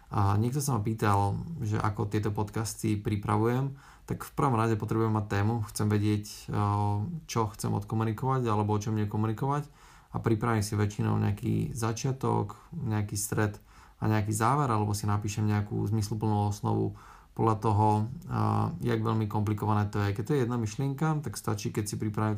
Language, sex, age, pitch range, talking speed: Slovak, male, 20-39, 105-115 Hz, 160 wpm